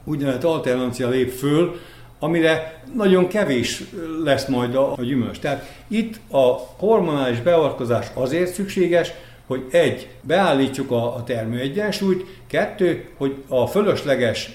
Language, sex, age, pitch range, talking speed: Hungarian, male, 60-79, 120-150 Hz, 110 wpm